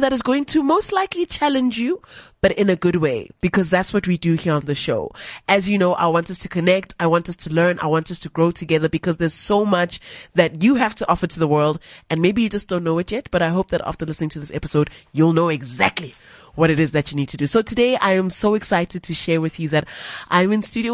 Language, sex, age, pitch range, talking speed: English, female, 20-39, 170-240 Hz, 270 wpm